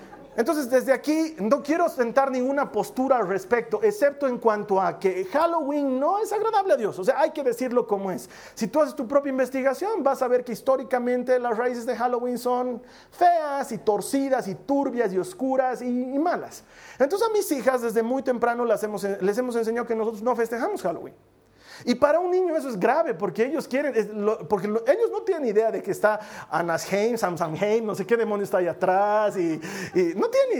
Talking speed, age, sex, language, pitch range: 210 wpm, 40-59, male, Spanish, 210-270 Hz